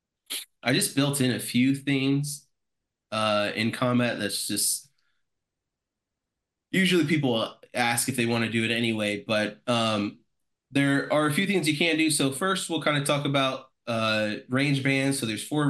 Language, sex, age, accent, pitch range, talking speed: English, male, 20-39, American, 105-135 Hz, 170 wpm